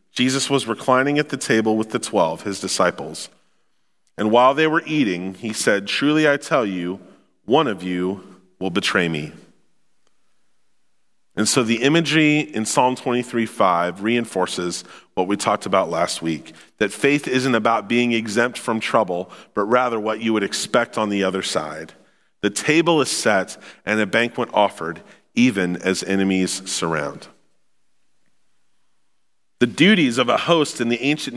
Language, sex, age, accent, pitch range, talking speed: English, male, 40-59, American, 100-130 Hz, 155 wpm